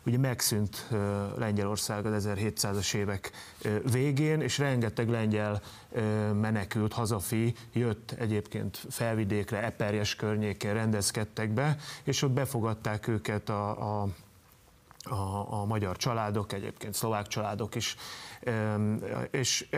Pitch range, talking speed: 105-125 Hz, 105 wpm